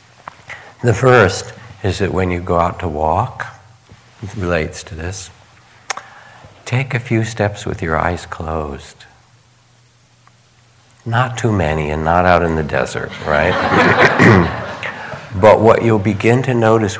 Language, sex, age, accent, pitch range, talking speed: English, male, 60-79, American, 80-105 Hz, 135 wpm